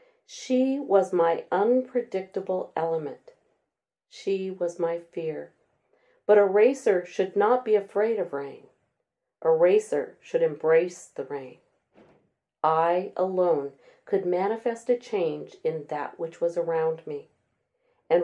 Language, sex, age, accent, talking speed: English, female, 40-59, American, 120 wpm